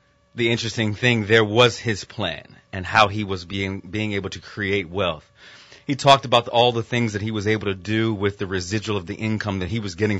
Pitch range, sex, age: 95-115 Hz, male, 30-49